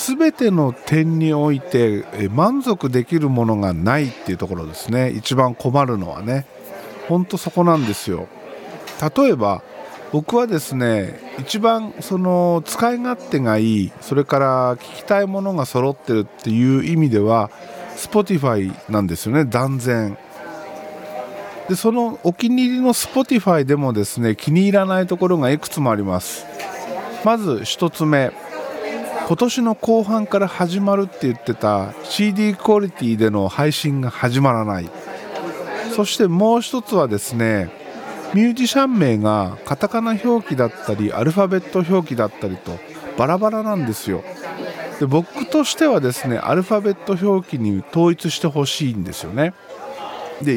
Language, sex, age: Japanese, male, 50-69